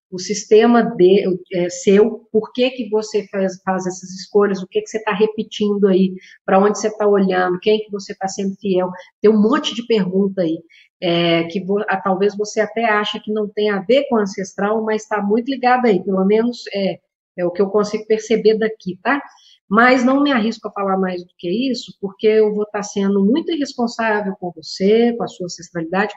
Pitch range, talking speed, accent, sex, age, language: 185-230 Hz, 210 wpm, Brazilian, female, 50-69, Portuguese